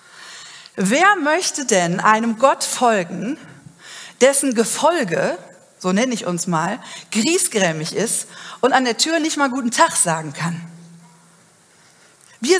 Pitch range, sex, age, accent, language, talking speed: 185-280 Hz, female, 40-59, German, German, 125 wpm